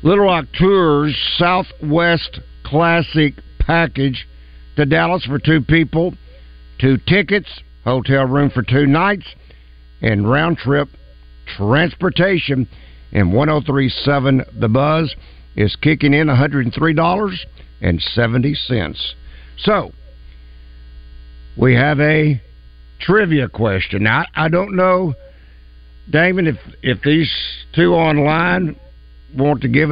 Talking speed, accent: 95 wpm, American